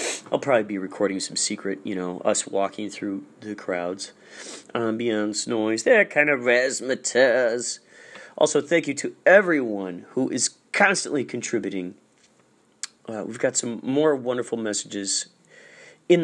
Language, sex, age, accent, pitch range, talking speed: English, male, 40-59, American, 105-160 Hz, 135 wpm